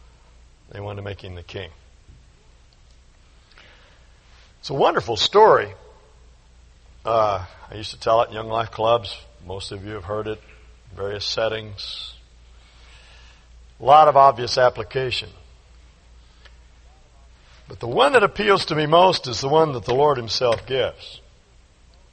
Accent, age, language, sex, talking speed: American, 60-79, English, male, 135 wpm